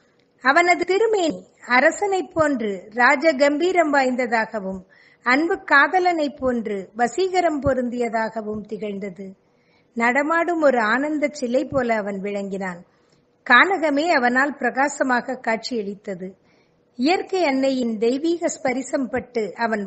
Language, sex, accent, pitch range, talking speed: Tamil, female, native, 225-290 Hz, 80 wpm